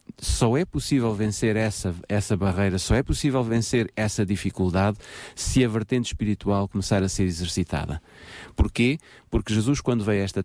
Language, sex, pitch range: Portuguese, male, 95-115 Hz